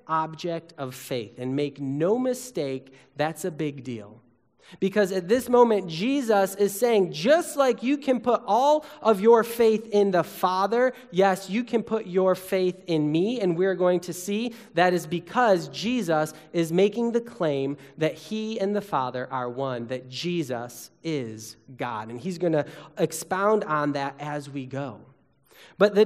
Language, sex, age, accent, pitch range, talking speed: English, male, 30-49, American, 150-220 Hz, 170 wpm